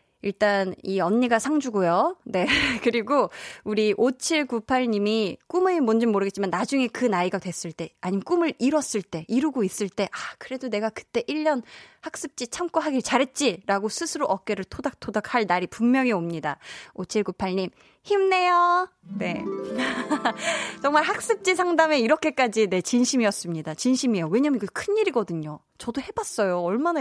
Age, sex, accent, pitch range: 20-39, female, native, 185-265 Hz